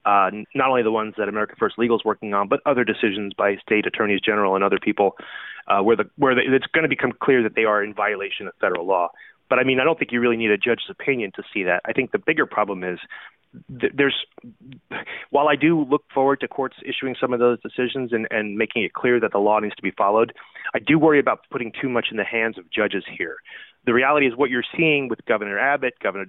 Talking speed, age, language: 255 wpm, 30-49, English